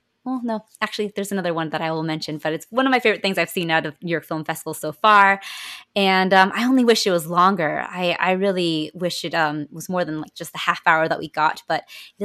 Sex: female